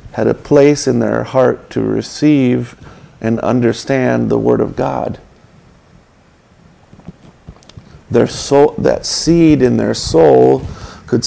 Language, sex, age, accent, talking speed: English, male, 50-69, American, 115 wpm